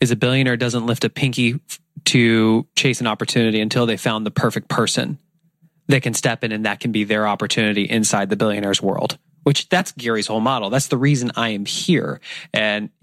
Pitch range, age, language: 110-145 Hz, 20-39, English